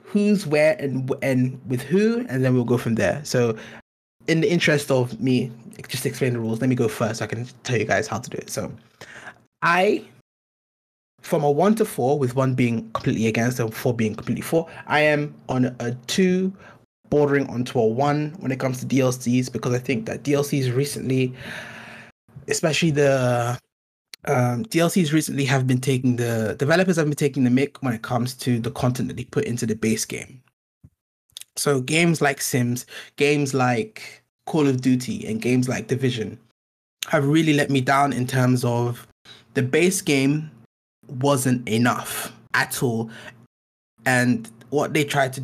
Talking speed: 175 wpm